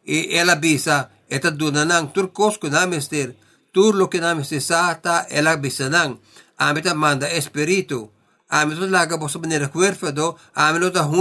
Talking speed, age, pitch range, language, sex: 120 wpm, 60-79, 145-180 Hz, English, male